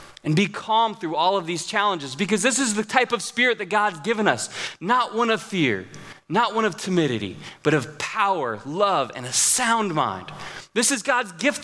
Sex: male